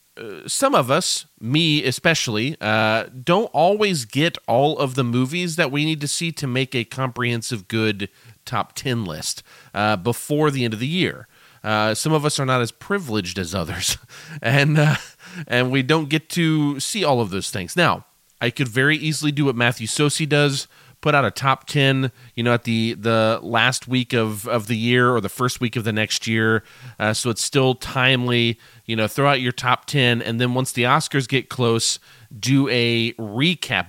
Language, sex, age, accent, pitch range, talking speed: English, male, 30-49, American, 110-150 Hz, 200 wpm